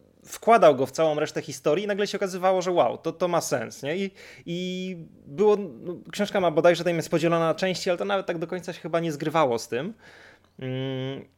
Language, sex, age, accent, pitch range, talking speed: Polish, male, 20-39, native, 130-180 Hz, 220 wpm